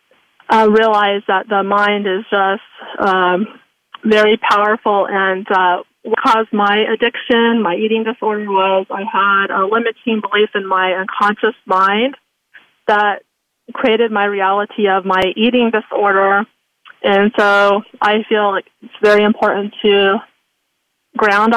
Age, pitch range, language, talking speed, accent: 30-49, 195-225 Hz, English, 130 wpm, American